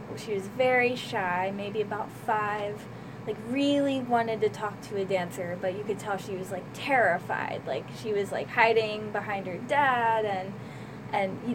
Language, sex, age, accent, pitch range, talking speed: English, female, 20-39, American, 195-235 Hz, 175 wpm